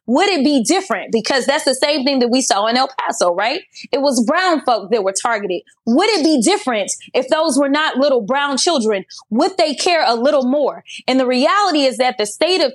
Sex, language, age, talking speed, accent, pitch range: female, English, 20-39, 225 wpm, American, 235-315 Hz